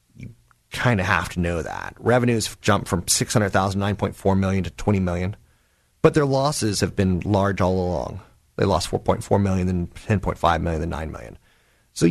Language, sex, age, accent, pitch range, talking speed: English, male, 30-49, American, 90-110 Hz, 175 wpm